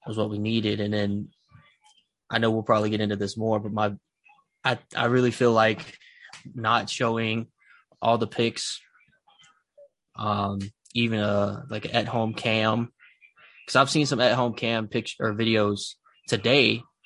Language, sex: English, male